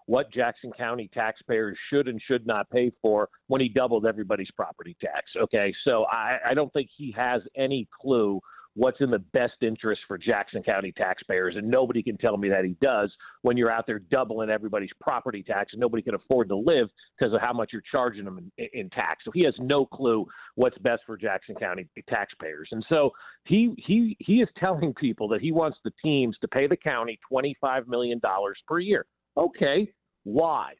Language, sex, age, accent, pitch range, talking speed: English, male, 40-59, American, 115-160 Hz, 195 wpm